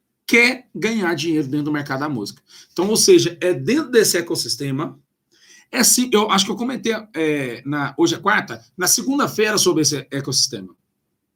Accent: Brazilian